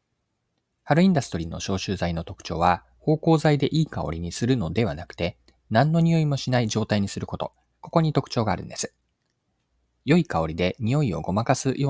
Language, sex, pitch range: Japanese, male, 90-145 Hz